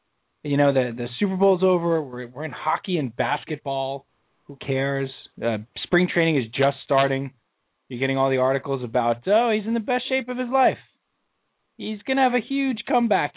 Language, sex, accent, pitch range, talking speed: English, male, American, 150-240 Hz, 195 wpm